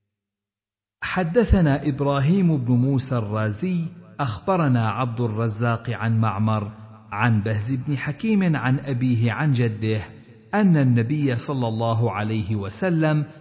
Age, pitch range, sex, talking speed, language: 50-69, 110-145 Hz, male, 105 wpm, Arabic